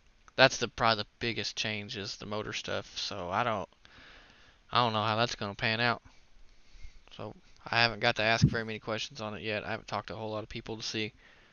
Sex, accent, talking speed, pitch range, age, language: male, American, 235 wpm, 105-120 Hz, 20-39, English